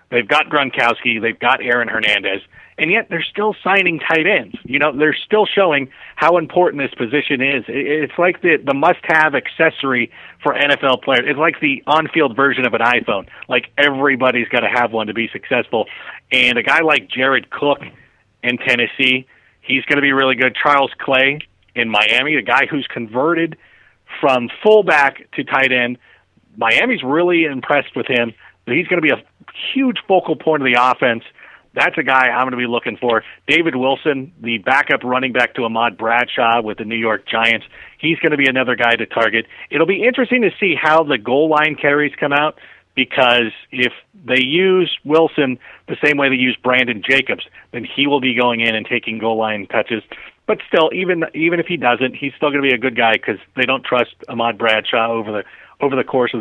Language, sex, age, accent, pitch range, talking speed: English, male, 30-49, American, 120-150 Hz, 200 wpm